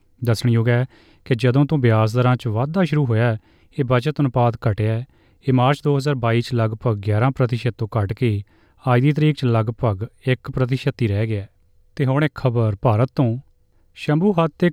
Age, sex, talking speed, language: 30-49, male, 195 wpm, Punjabi